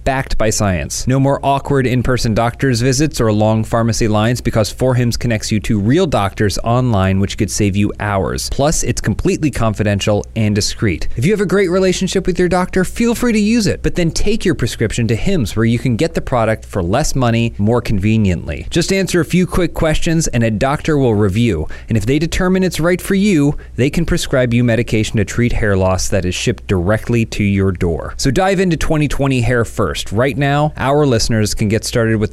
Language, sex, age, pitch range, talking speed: English, male, 30-49, 105-140 Hz, 210 wpm